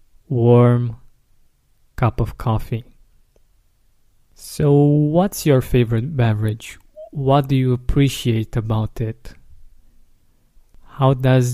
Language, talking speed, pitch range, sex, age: English, 90 wpm, 110-130 Hz, male, 20-39